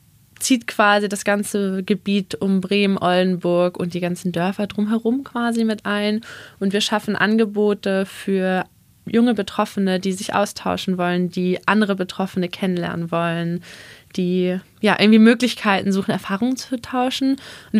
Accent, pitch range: German, 185-220 Hz